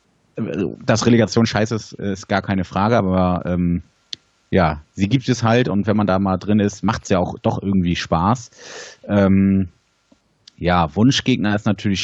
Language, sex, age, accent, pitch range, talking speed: German, male, 30-49, German, 95-115 Hz, 170 wpm